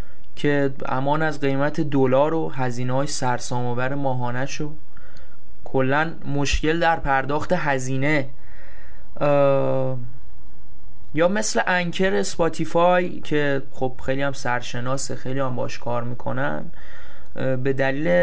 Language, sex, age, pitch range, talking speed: Persian, male, 20-39, 125-145 Hz, 110 wpm